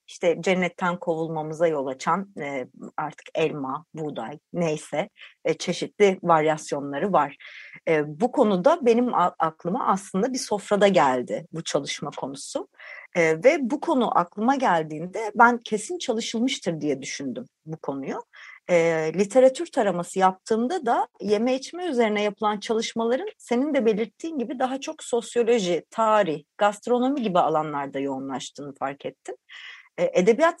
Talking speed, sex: 115 wpm, female